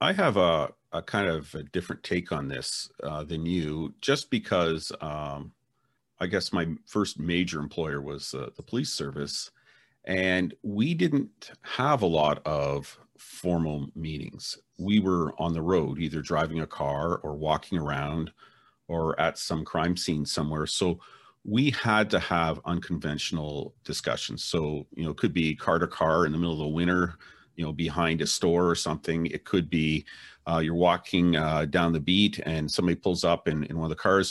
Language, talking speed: English, 180 wpm